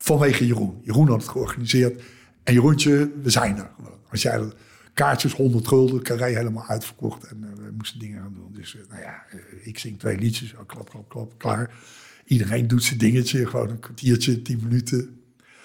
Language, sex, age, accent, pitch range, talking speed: Dutch, male, 60-79, Dutch, 120-165 Hz, 175 wpm